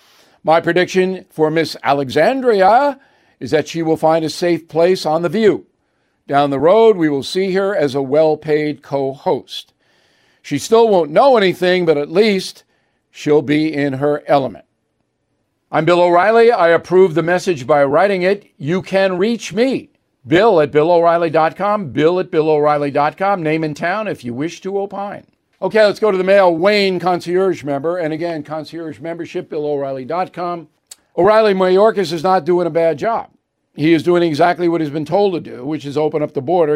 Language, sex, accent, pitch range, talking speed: English, male, American, 150-185 Hz, 175 wpm